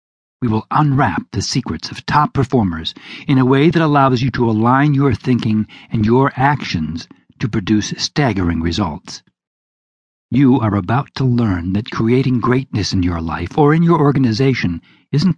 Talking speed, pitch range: 160 wpm, 95-135 Hz